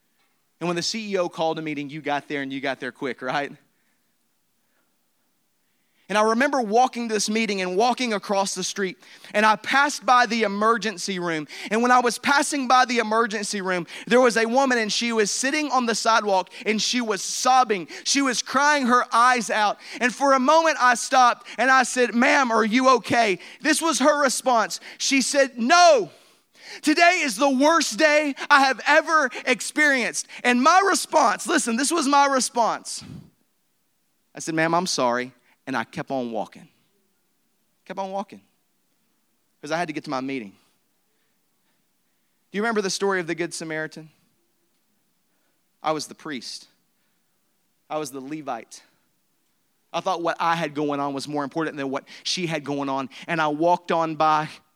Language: English